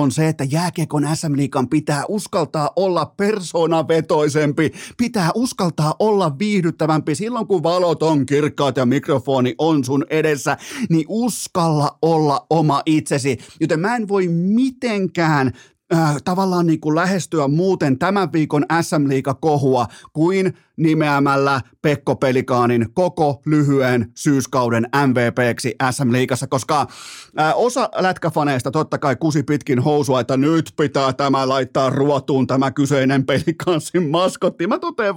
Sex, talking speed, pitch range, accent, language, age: male, 125 wpm, 140-180 Hz, native, Finnish, 30-49